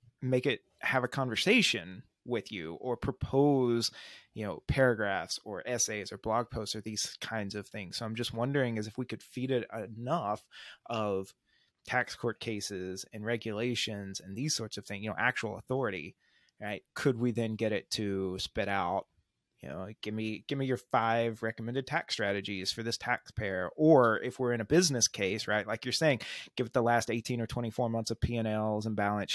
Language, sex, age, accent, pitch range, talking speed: English, male, 30-49, American, 105-130 Hz, 195 wpm